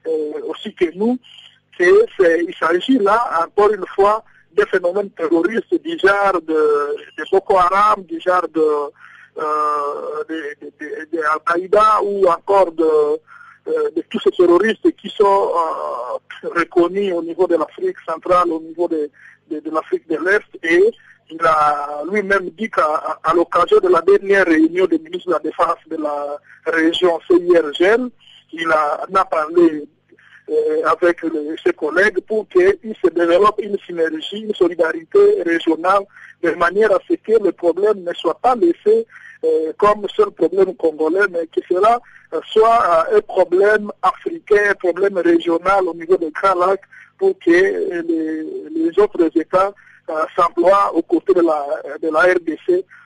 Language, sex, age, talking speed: French, male, 50-69, 145 wpm